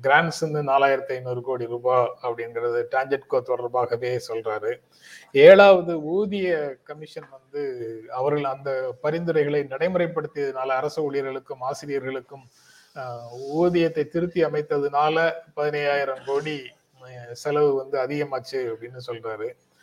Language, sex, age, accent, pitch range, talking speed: Tamil, male, 30-49, native, 130-175 Hz, 95 wpm